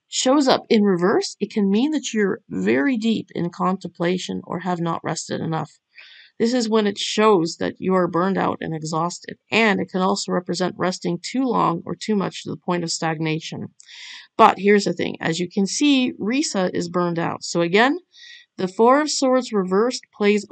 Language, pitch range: English, 175-235 Hz